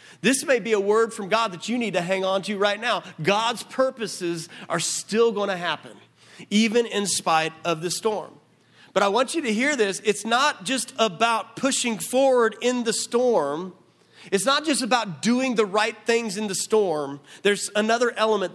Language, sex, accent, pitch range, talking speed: English, male, American, 165-220 Hz, 190 wpm